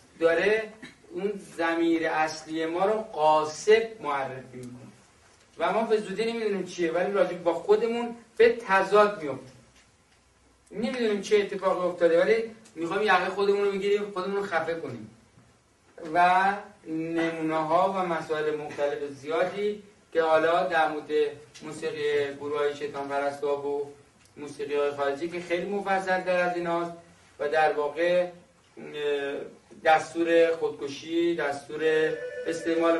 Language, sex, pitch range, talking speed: Persian, male, 155-195 Hz, 115 wpm